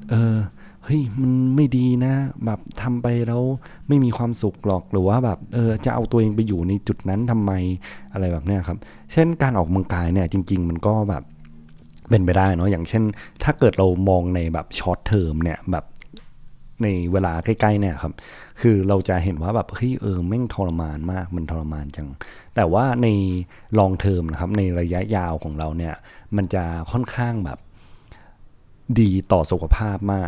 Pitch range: 85-110 Hz